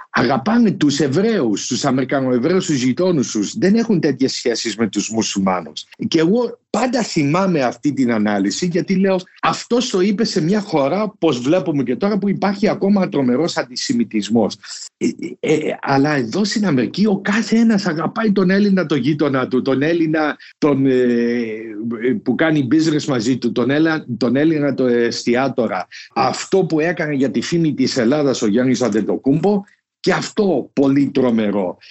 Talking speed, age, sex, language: 160 wpm, 60-79, male, Greek